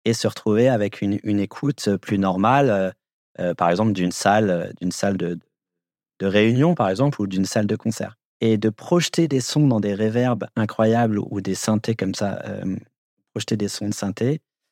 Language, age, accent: French, 30-49, French